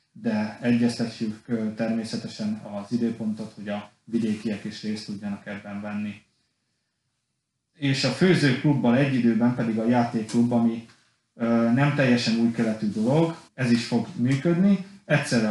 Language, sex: Hungarian, male